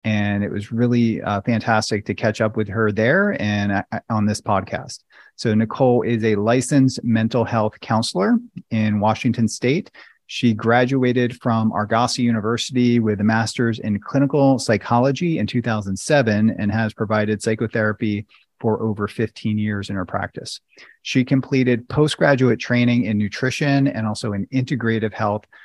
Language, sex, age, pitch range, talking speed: English, male, 30-49, 105-125 Hz, 145 wpm